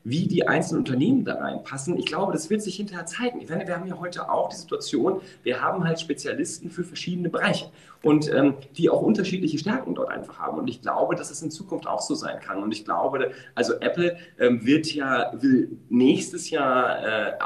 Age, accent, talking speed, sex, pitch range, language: 40-59, German, 205 wpm, male, 150-190 Hz, German